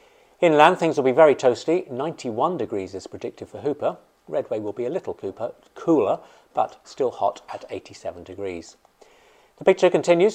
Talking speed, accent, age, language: 155 wpm, British, 50-69, English